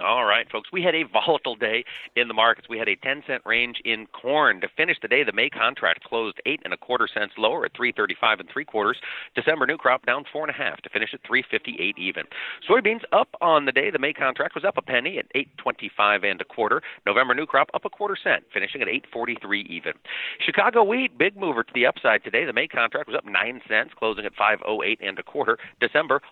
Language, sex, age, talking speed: English, male, 40-59, 245 wpm